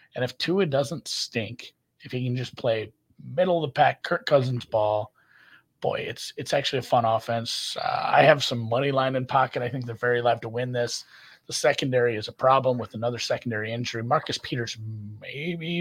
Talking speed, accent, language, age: 195 wpm, American, English, 30-49